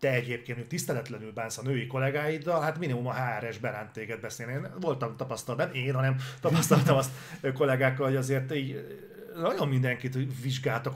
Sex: male